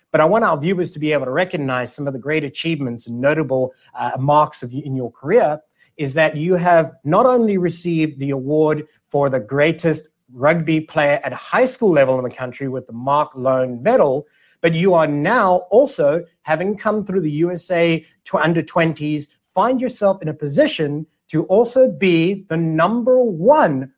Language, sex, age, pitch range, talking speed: English, male, 30-49, 145-190 Hz, 180 wpm